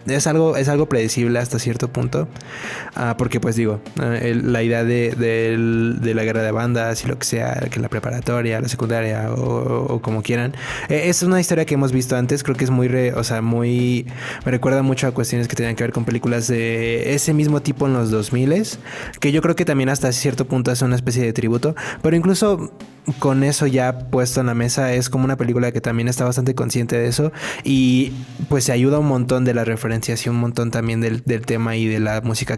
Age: 20-39